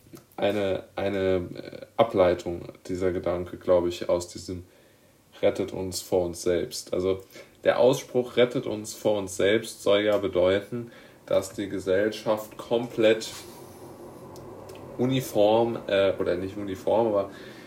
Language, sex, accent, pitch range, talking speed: German, male, German, 95-115 Hz, 120 wpm